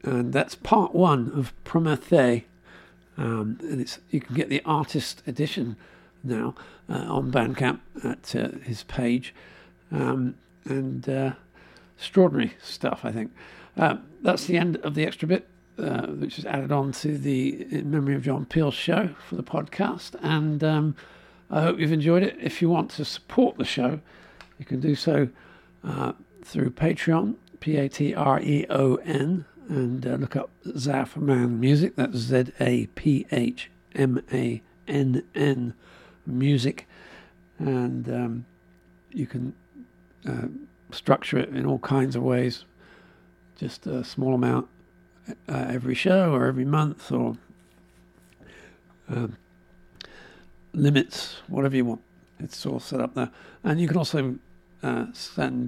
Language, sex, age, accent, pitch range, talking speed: English, male, 60-79, British, 125-155 Hz, 130 wpm